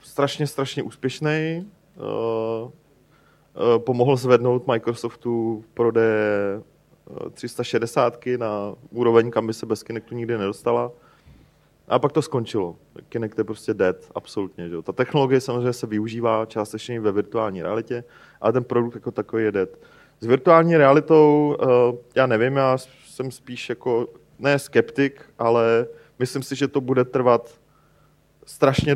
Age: 30-49